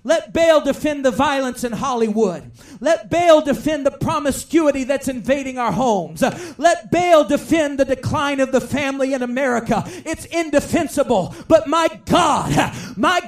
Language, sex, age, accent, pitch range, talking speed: English, male, 40-59, American, 205-270 Hz, 145 wpm